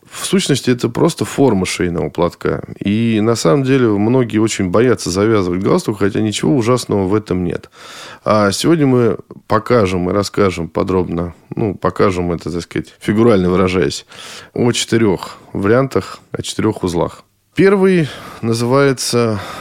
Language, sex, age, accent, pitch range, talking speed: Russian, male, 20-39, native, 100-130 Hz, 135 wpm